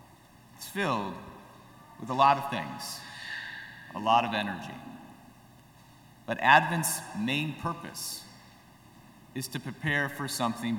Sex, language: male, English